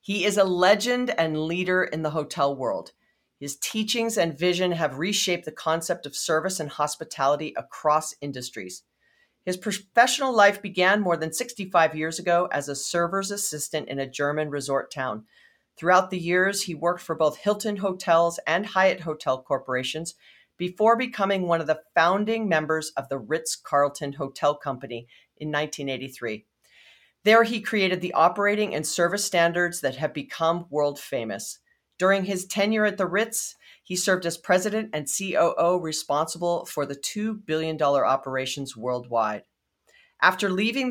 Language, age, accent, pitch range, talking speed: English, 40-59, American, 145-195 Hz, 150 wpm